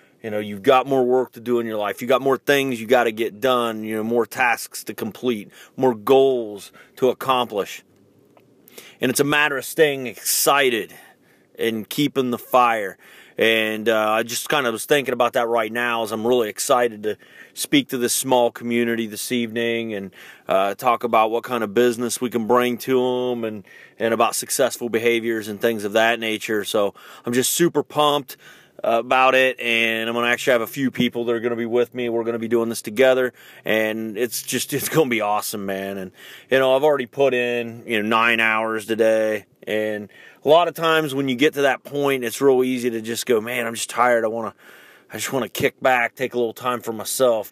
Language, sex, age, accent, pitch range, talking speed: English, male, 30-49, American, 115-130 Hz, 220 wpm